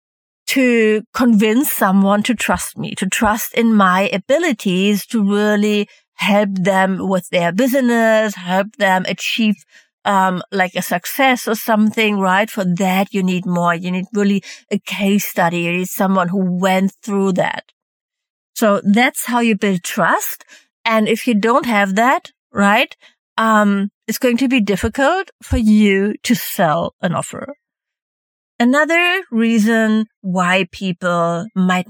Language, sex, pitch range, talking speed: English, female, 190-245 Hz, 145 wpm